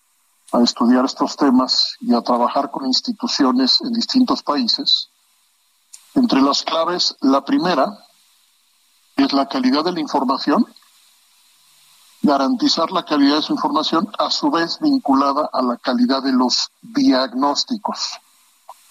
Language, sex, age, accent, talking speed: Spanish, male, 50-69, Mexican, 125 wpm